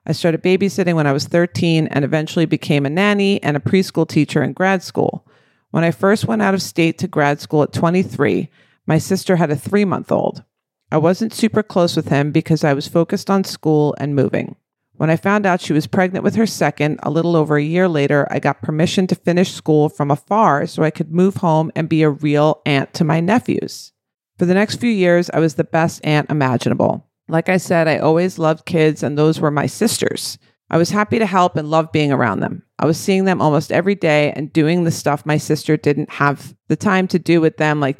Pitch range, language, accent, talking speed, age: 150-180 Hz, English, American, 225 wpm, 40-59